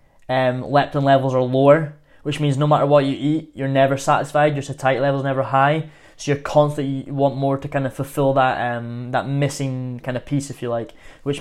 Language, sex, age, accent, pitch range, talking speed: English, male, 20-39, British, 130-145 Hz, 215 wpm